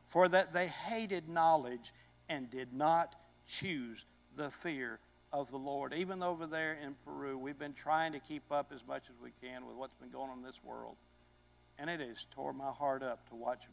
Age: 60-79